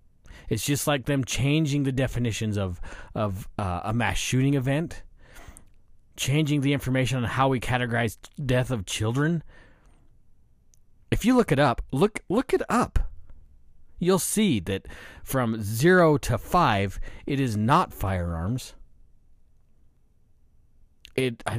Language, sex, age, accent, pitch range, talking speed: English, male, 40-59, American, 100-140 Hz, 130 wpm